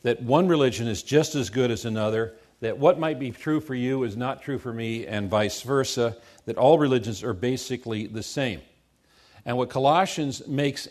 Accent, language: American, English